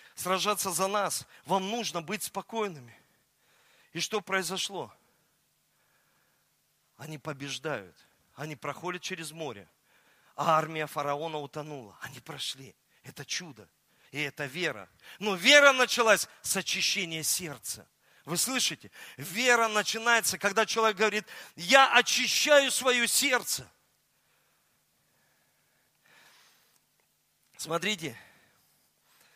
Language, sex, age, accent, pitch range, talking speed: Russian, male, 40-59, native, 170-250 Hz, 90 wpm